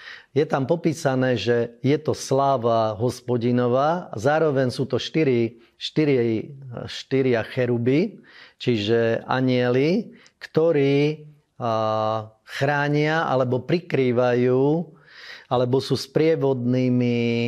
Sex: male